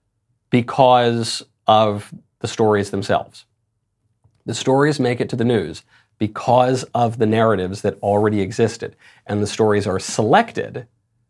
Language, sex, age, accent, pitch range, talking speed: English, male, 40-59, American, 105-130 Hz, 125 wpm